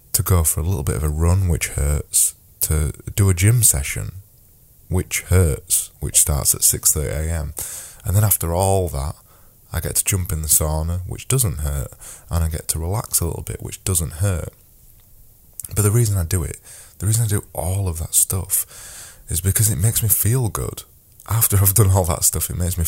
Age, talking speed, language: 20-39, 205 wpm, English